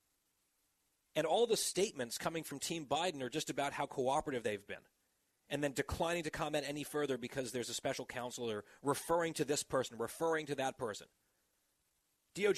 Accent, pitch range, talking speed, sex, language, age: American, 120-150 Hz, 170 wpm, male, English, 40-59